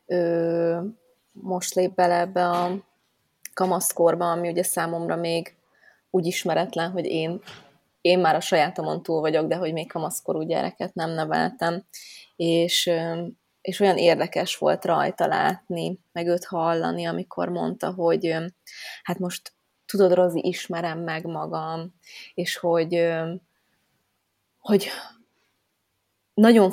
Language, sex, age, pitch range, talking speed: Hungarian, female, 20-39, 165-185 Hz, 115 wpm